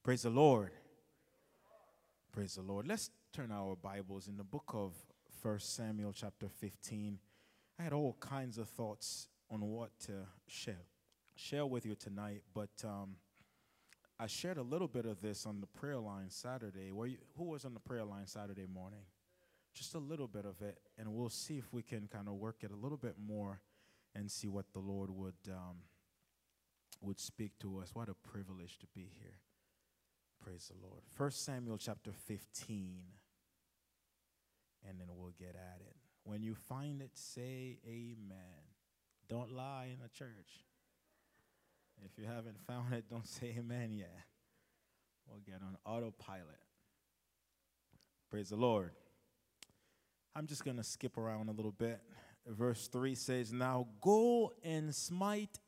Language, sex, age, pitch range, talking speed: English, male, 20-39, 100-125 Hz, 160 wpm